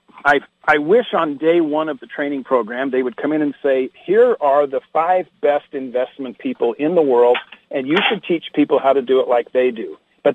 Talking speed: 225 wpm